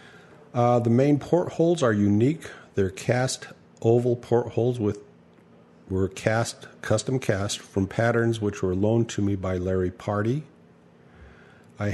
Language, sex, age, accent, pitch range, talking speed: English, male, 50-69, American, 90-115 Hz, 125 wpm